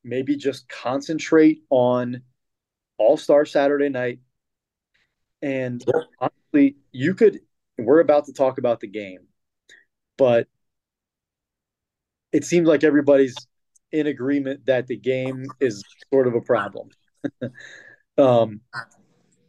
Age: 30-49